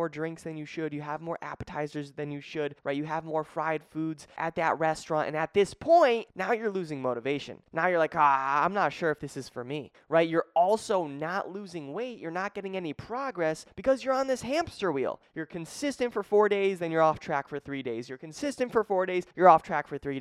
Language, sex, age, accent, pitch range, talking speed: English, male, 20-39, American, 150-205 Hz, 235 wpm